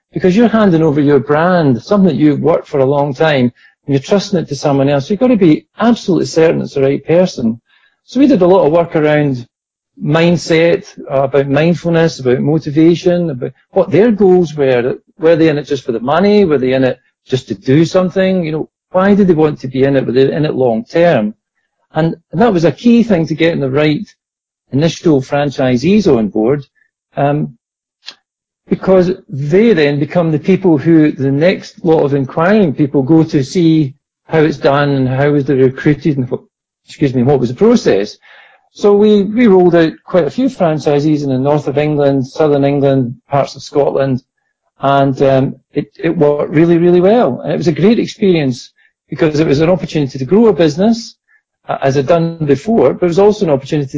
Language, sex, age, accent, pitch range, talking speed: English, male, 50-69, British, 140-180 Hz, 200 wpm